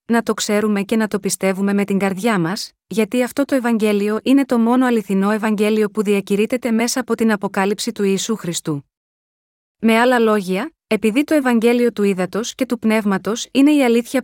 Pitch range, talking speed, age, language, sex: 200-240 Hz, 180 wpm, 20-39, Greek, female